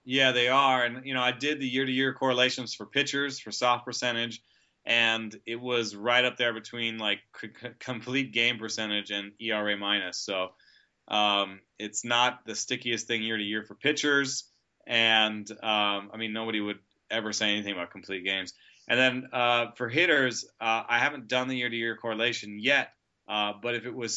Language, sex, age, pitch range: English, male, 20-39, 105-125 Hz